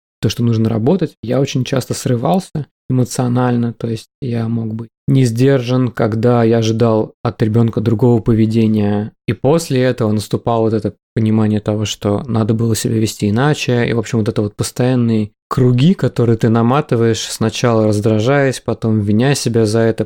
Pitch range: 115-130 Hz